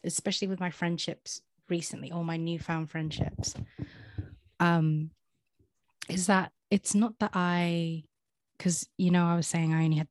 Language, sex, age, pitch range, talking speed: English, female, 30-49, 155-175 Hz, 150 wpm